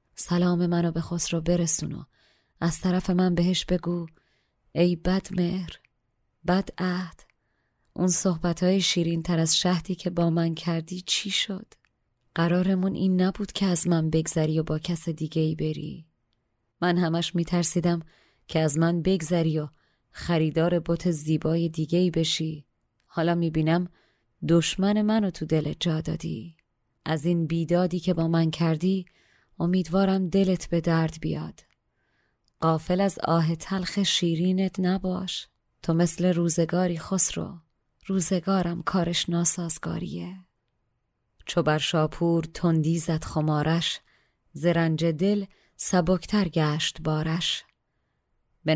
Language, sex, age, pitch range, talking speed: Persian, female, 30-49, 160-180 Hz, 120 wpm